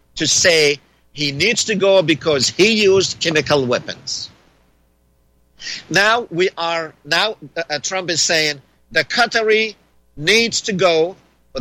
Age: 50-69